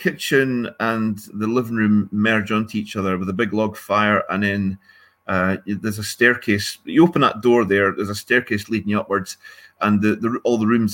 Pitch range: 105-135 Hz